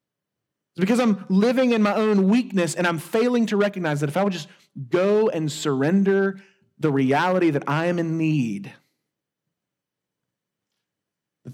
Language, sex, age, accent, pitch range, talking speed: English, male, 30-49, American, 175-225 Hz, 145 wpm